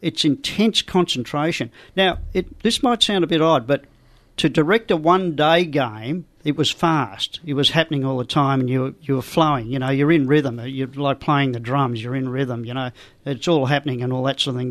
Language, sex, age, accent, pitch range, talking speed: English, male, 50-69, Australian, 135-160 Hz, 230 wpm